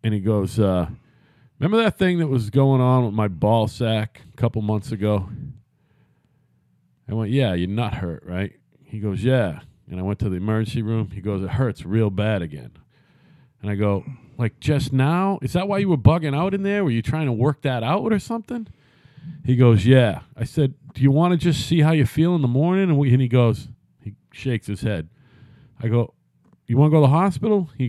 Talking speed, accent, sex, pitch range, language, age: 220 wpm, American, male, 105-145 Hz, English, 40-59